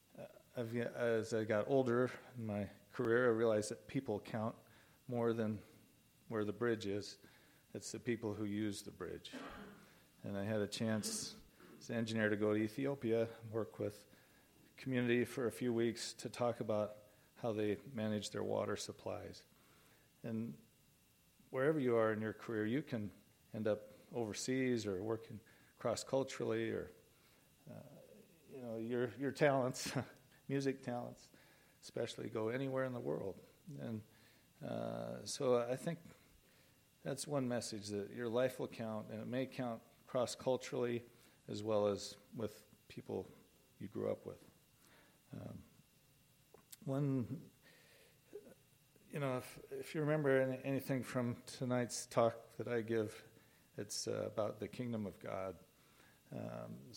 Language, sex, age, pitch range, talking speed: English, male, 40-59, 110-125 Hz, 140 wpm